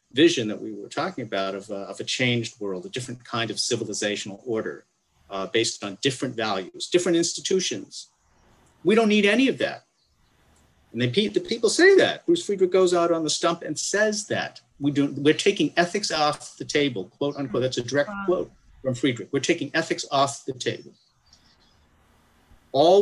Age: 50-69